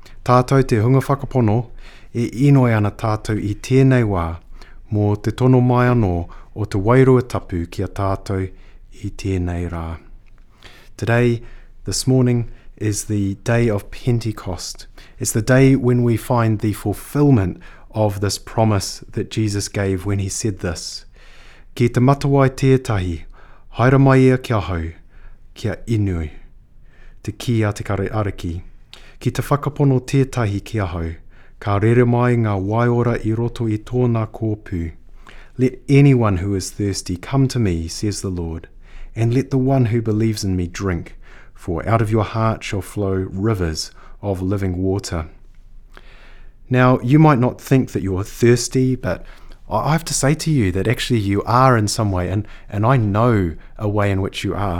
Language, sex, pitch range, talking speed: English, male, 95-125 Hz, 155 wpm